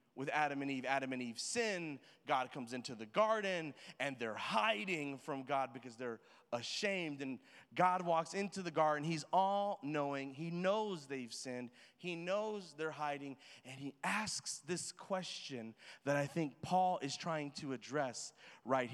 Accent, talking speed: American, 160 wpm